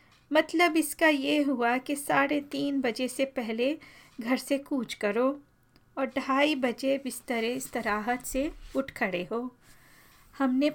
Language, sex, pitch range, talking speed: Hindi, female, 240-285 Hz, 140 wpm